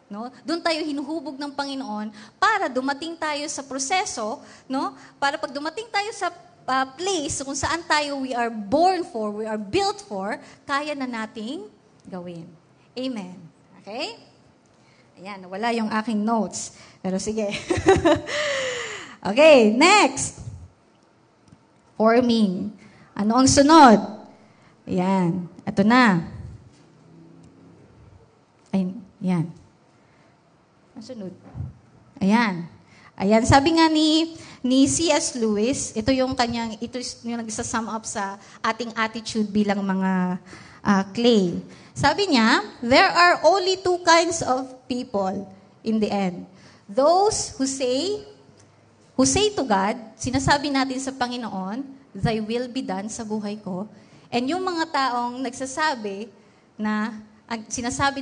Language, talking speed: Filipino, 115 wpm